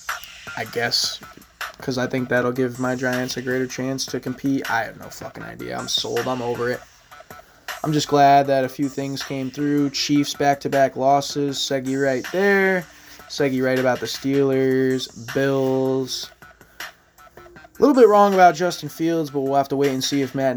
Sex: male